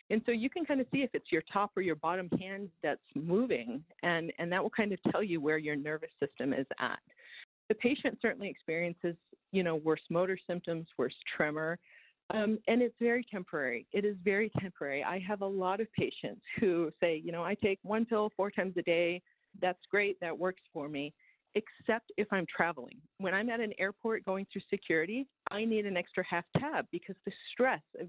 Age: 40-59